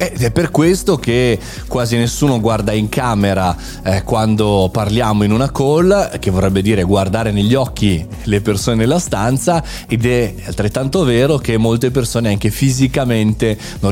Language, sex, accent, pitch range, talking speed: Italian, male, native, 100-130 Hz, 155 wpm